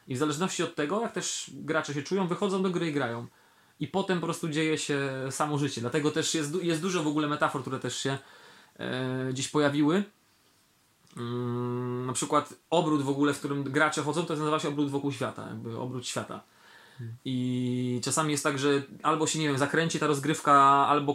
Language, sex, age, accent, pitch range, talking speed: Polish, male, 20-39, native, 140-170 Hz, 200 wpm